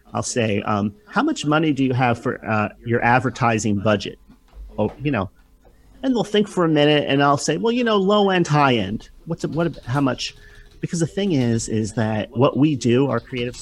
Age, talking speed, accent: 40-59, 220 wpm, American